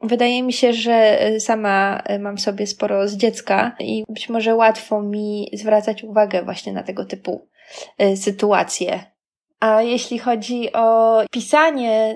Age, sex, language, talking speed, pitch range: 20-39, female, Polish, 135 wpm, 210-255 Hz